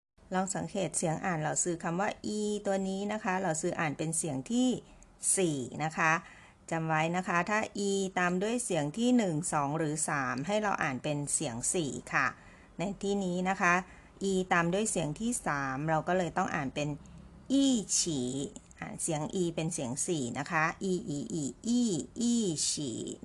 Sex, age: female, 30-49